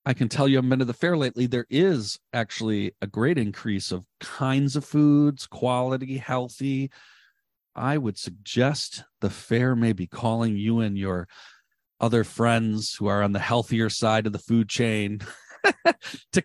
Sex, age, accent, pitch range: male, 40-59, American, 110-150 Hz